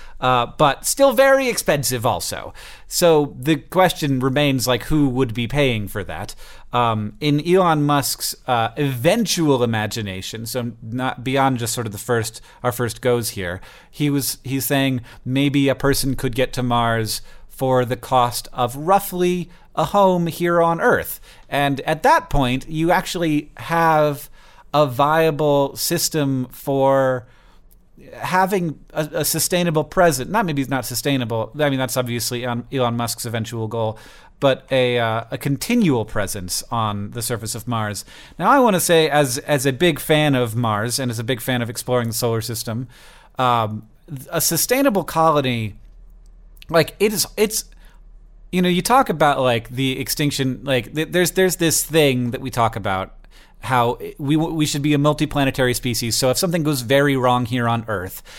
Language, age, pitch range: English, 40-59, 120-155 Hz